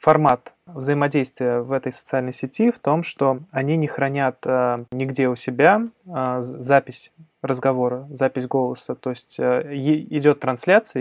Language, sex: Russian, male